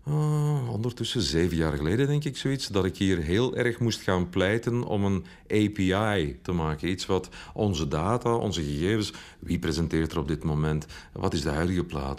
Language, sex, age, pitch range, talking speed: Dutch, male, 40-59, 85-115 Hz, 185 wpm